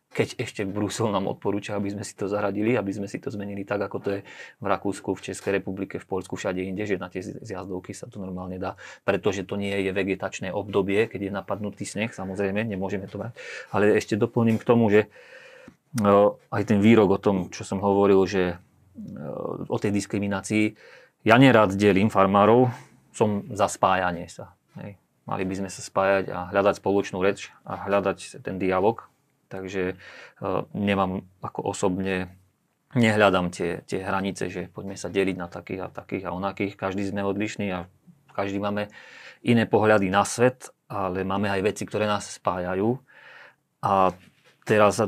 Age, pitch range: 30-49, 95-105 Hz